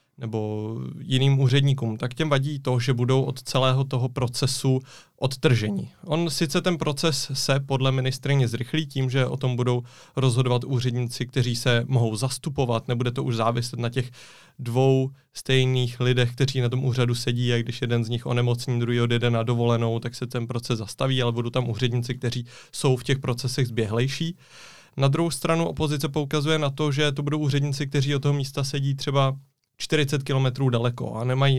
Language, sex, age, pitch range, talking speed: Czech, male, 30-49, 120-135 Hz, 180 wpm